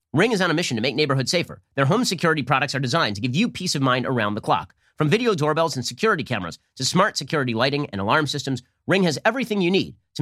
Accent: American